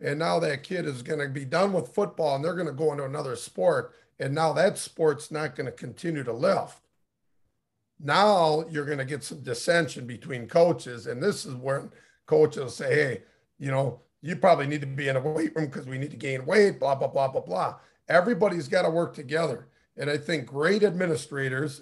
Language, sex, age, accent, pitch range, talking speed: English, male, 50-69, American, 140-170 Hz, 210 wpm